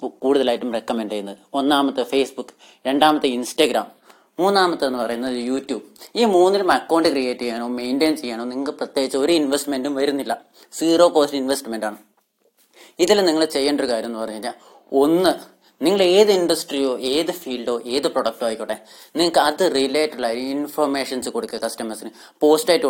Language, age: Malayalam, 30-49